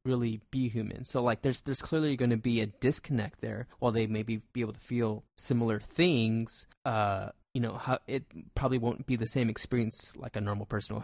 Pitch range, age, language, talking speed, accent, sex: 110-130 Hz, 20-39, English, 210 wpm, American, male